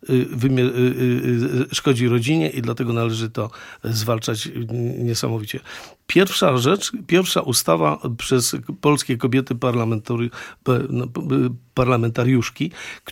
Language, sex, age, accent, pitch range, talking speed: Polish, male, 50-69, native, 115-135 Hz, 75 wpm